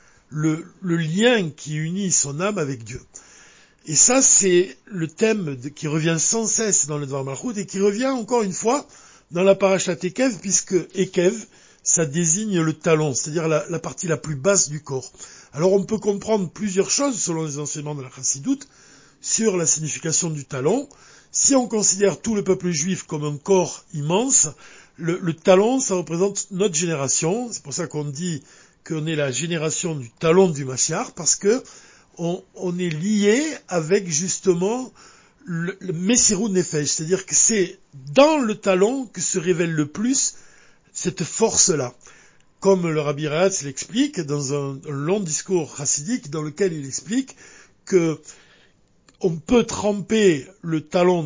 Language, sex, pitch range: French, male, 150-200 Hz